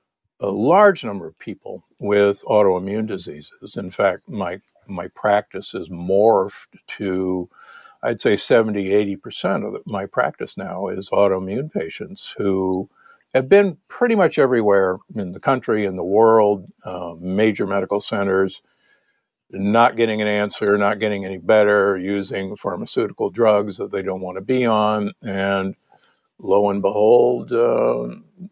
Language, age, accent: English, 60-79, American